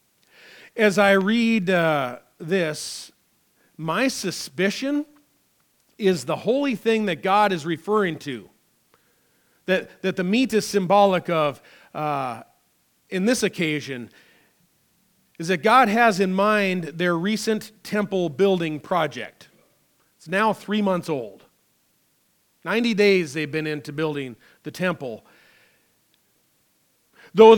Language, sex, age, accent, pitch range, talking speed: English, male, 40-59, American, 170-220 Hz, 115 wpm